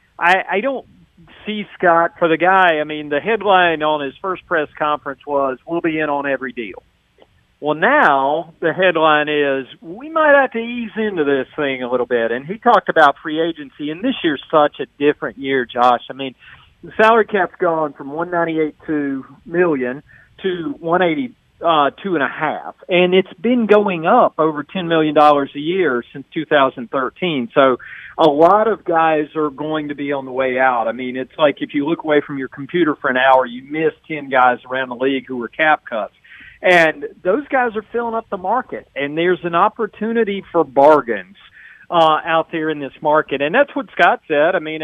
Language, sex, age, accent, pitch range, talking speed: English, male, 40-59, American, 140-185 Hz, 200 wpm